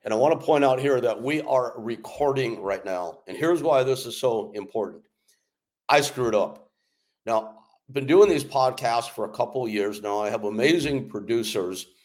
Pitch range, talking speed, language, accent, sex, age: 105-130 Hz, 195 wpm, English, American, male, 50-69